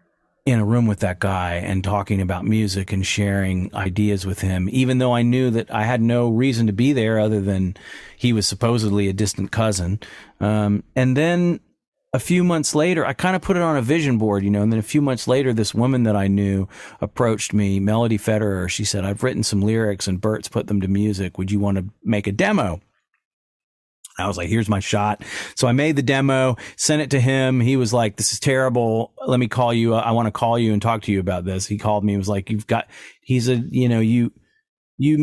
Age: 40-59